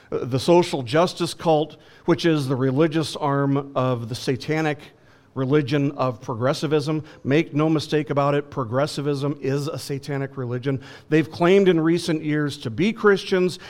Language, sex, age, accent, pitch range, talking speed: English, male, 50-69, American, 135-170 Hz, 145 wpm